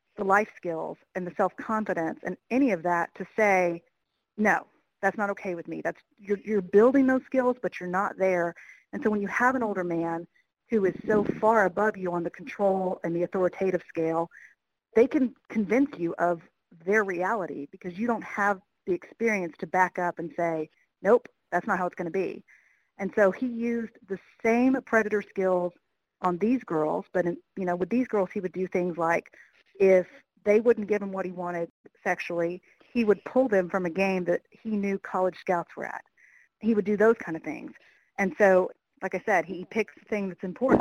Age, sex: 50-69, female